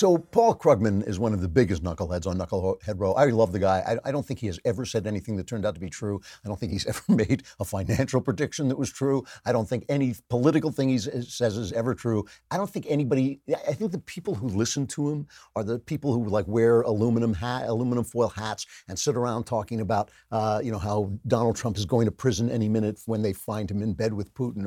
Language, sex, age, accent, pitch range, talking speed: English, male, 50-69, American, 105-135 Hz, 250 wpm